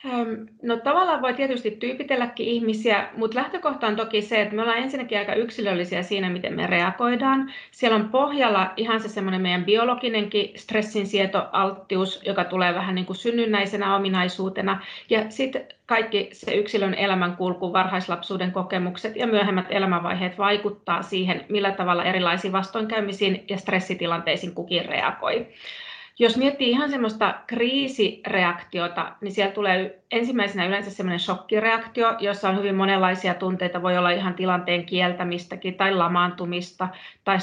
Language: Finnish